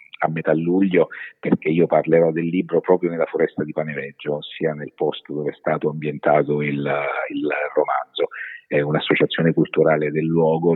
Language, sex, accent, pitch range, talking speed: Italian, male, native, 75-85 Hz, 155 wpm